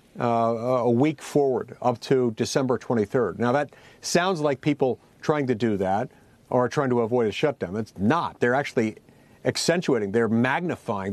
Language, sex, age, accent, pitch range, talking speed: English, male, 50-69, American, 125-155 Hz, 160 wpm